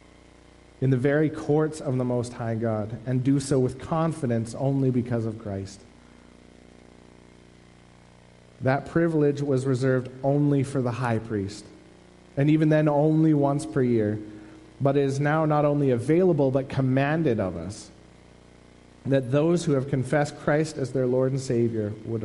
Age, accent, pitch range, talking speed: 40-59, American, 95-140 Hz, 155 wpm